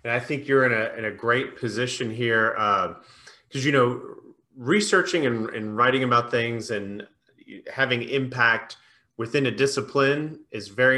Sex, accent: male, American